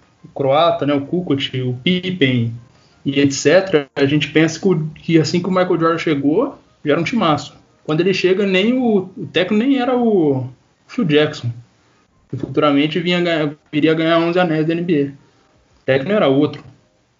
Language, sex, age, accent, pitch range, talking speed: Portuguese, male, 20-39, Brazilian, 140-180 Hz, 175 wpm